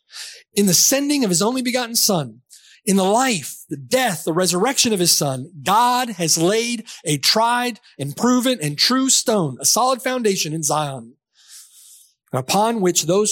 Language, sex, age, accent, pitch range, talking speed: English, male, 30-49, American, 150-215 Hz, 160 wpm